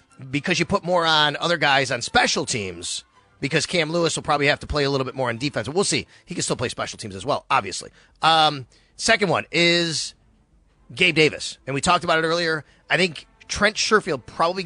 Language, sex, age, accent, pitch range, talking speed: English, male, 30-49, American, 130-170 Hz, 215 wpm